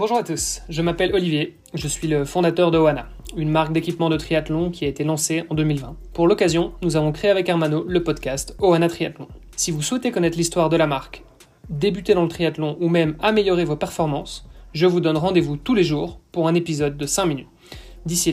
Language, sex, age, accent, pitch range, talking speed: French, male, 20-39, French, 100-160 Hz, 215 wpm